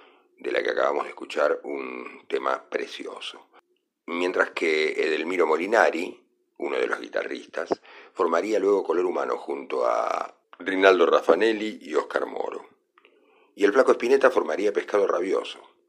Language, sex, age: Spanish, male, 50-69